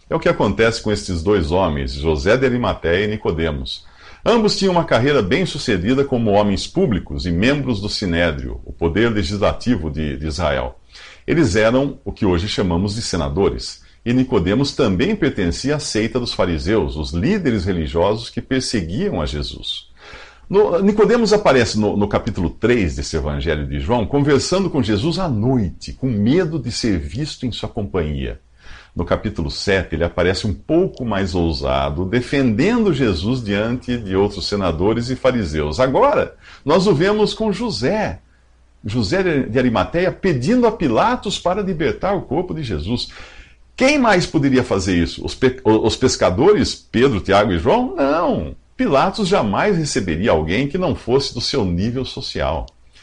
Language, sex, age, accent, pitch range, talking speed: Portuguese, male, 50-69, Brazilian, 85-135 Hz, 155 wpm